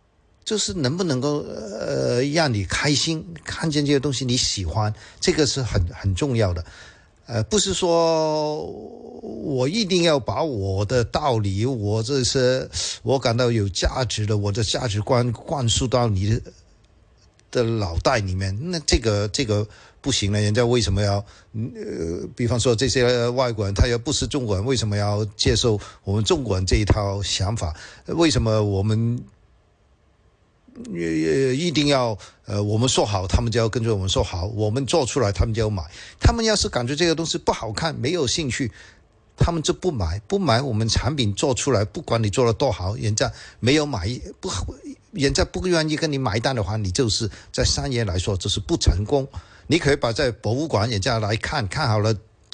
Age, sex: 50-69, male